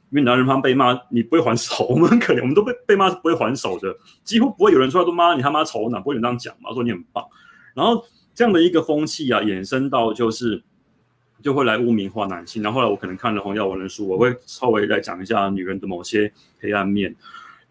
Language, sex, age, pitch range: Chinese, male, 30-49, 100-130 Hz